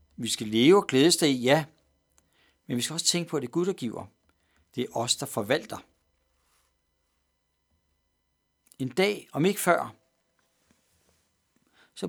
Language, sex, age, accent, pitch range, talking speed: Danish, male, 60-79, native, 115-165 Hz, 155 wpm